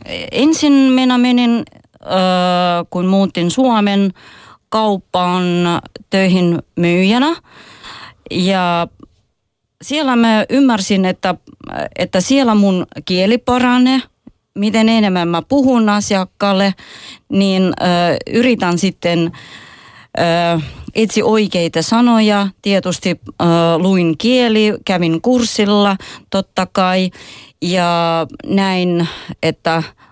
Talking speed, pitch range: 75 wpm, 165-220 Hz